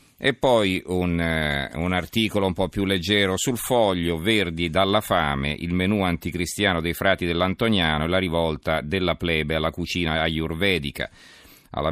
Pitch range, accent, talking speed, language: 80-95 Hz, native, 145 wpm, Italian